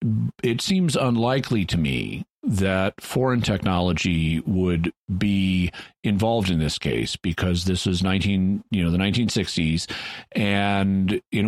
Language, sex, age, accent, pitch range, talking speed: English, male, 40-59, American, 90-110 Hz, 125 wpm